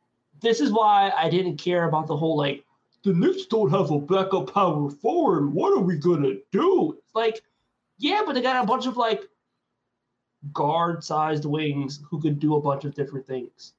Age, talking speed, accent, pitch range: 20-39, 185 wpm, American, 140-170 Hz